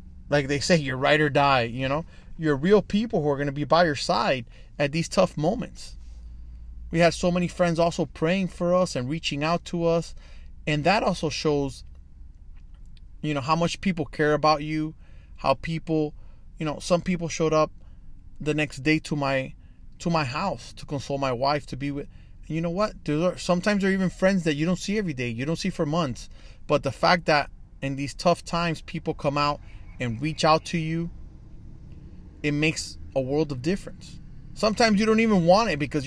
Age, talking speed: 20-39, 205 wpm